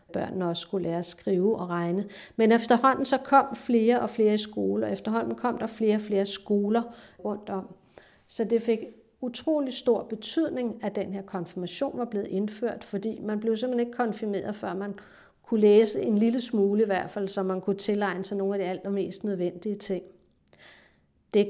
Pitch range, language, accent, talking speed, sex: 185-215 Hz, Danish, native, 185 wpm, female